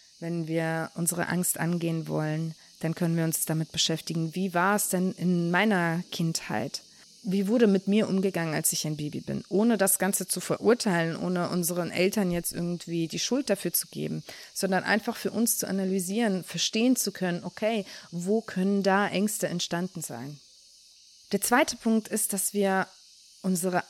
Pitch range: 175-215 Hz